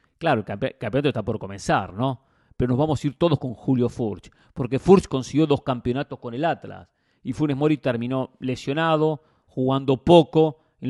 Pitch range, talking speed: 120-160 Hz, 175 wpm